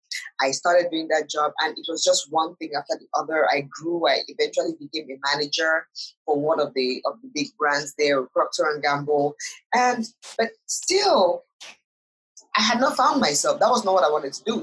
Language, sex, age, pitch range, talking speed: English, female, 20-39, 155-220 Hz, 190 wpm